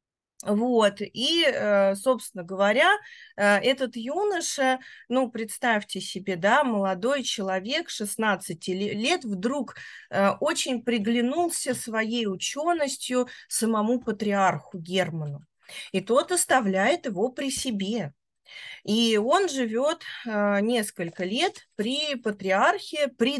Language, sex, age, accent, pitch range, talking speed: Russian, female, 30-49, native, 200-255 Hz, 90 wpm